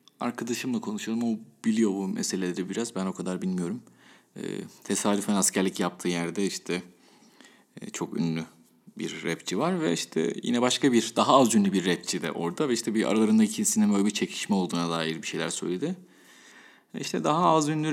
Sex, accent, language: male, native, Turkish